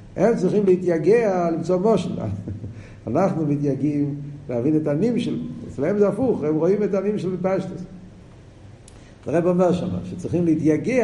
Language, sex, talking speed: Hebrew, male, 135 wpm